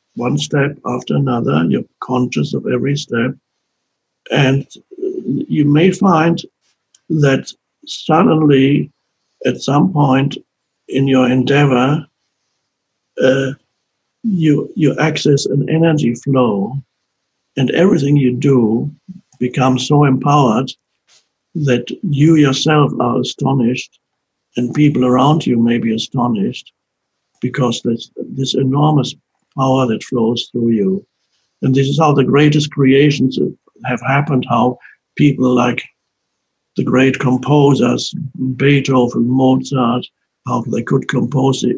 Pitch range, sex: 125-145 Hz, male